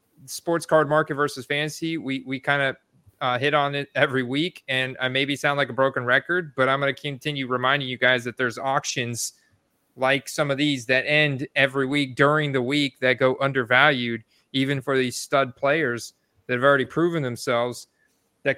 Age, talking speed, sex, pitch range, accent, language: 30-49, 185 wpm, male, 125-145 Hz, American, English